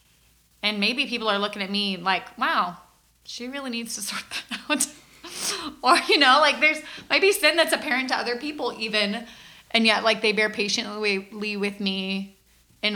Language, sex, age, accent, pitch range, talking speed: English, female, 20-39, American, 180-215 Hz, 175 wpm